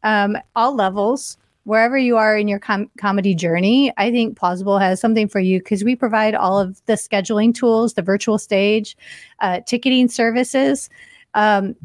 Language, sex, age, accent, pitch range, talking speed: English, female, 30-49, American, 195-230 Hz, 160 wpm